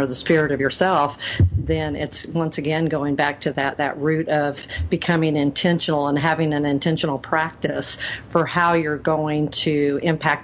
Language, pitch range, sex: English, 145-165 Hz, female